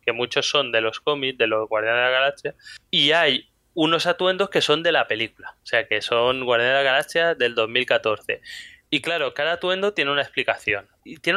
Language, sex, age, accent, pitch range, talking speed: English, male, 20-39, Spanish, 125-165 Hz, 210 wpm